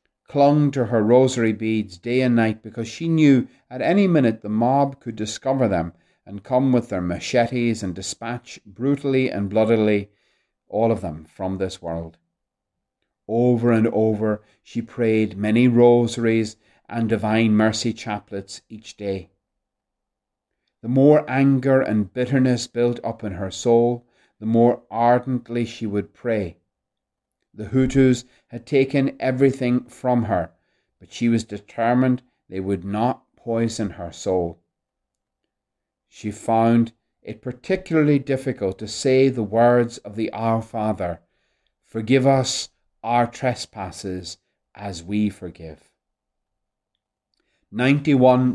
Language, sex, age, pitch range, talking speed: English, male, 40-59, 100-125 Hz, 125 wpm